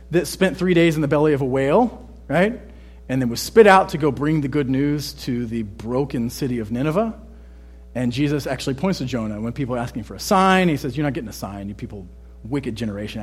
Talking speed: 235 wpm